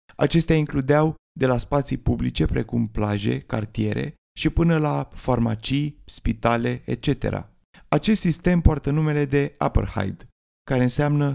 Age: 30-49